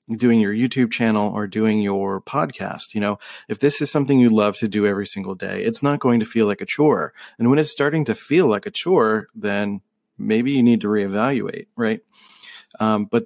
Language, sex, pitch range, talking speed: English, male, 105-125 Hz, 215 wpm